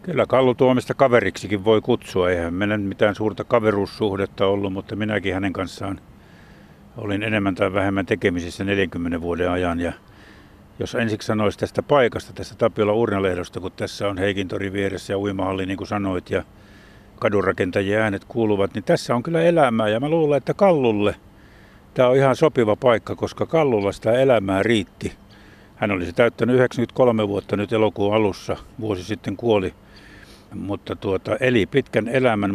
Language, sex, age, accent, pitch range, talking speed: Finnish, male, 50-69, native, 100-120 Hz, 155 wpm